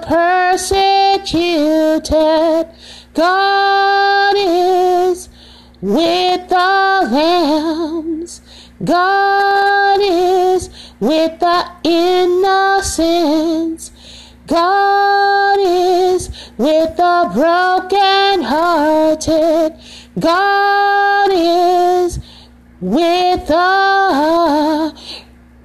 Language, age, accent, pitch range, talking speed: English, 30-49, American, 325-390 Hz, 50 wpm